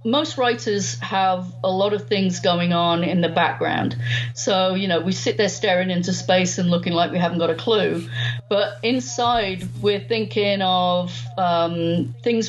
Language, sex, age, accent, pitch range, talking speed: English, female, 40-59, British, 165-220 Hz, 175 wpm